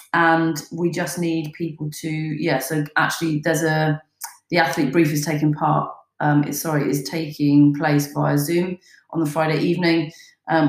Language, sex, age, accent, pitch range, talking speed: English, female, 30-49, British, 155-185 Hz, 170 wpm